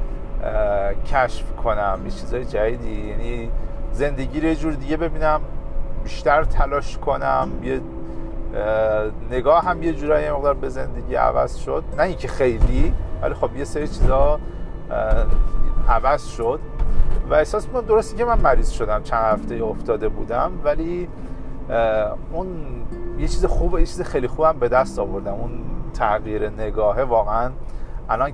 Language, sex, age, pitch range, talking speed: Persian, male, 40-59, 110-165 Hz, 135 wpm